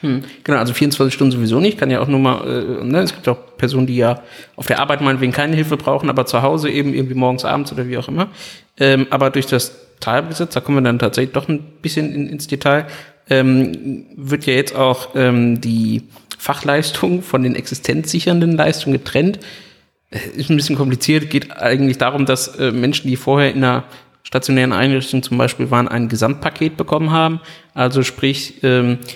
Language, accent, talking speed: German, German, 195 wpm